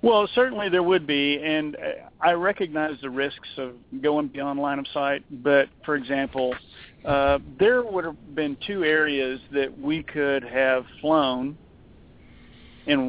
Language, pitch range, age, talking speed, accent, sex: English, 130-155 Hz, 50-69, 145 wpm, American, male